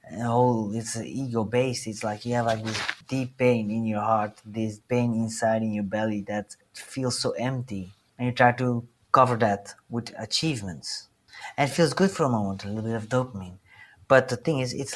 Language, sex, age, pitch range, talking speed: English, male, 30-49, 105-125 Hz, 210 wpm